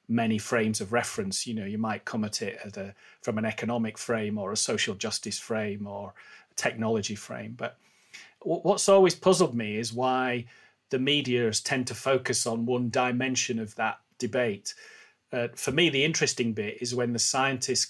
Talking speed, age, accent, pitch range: 180 wpm, 30-49, British, 120-145 Hz